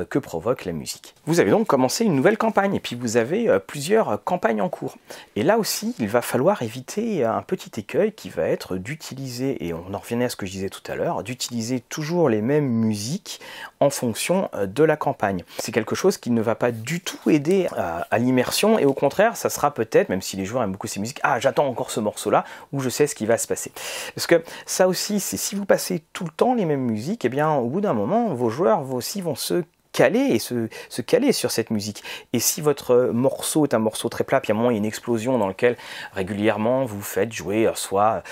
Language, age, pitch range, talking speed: French, 30-49, 115-155 Hz, 245 wpm